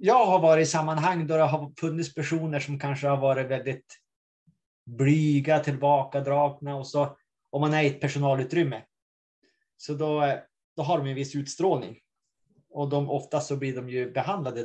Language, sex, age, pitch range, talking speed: Swedish, male, 30-49, 135-160 Hz, 170 wpm